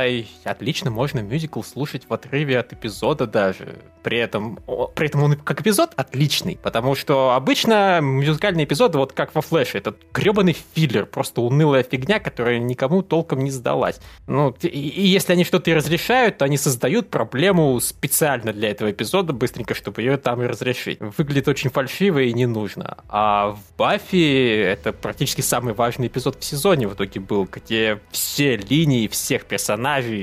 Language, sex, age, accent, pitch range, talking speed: Russian, male, 20-39, native, 120-165 Hz, 170 wpm